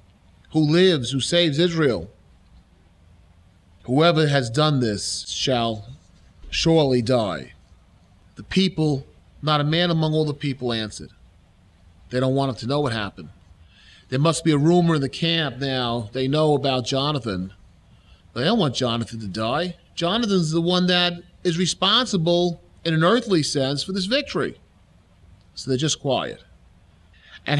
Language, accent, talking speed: English, American, 145 wpm